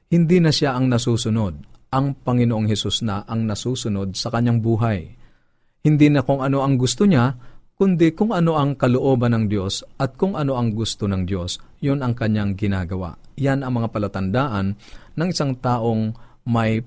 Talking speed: 165 wpm